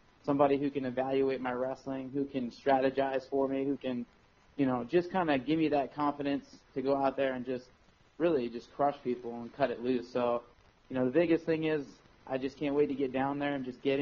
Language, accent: English, American